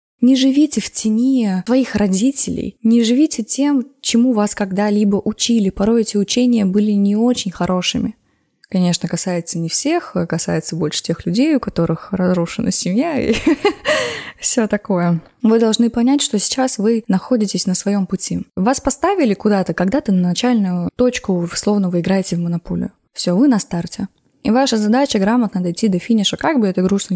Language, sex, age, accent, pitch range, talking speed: Russian, female, 20-39, native, 185-240 Hz, 160 wpm